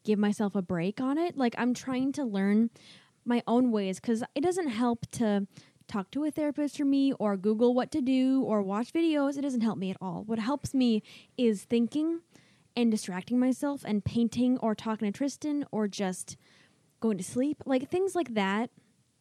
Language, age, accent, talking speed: English, 10-29, American, 195 wpm